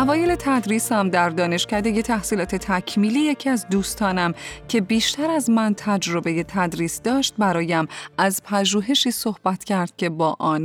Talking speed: 135 wpm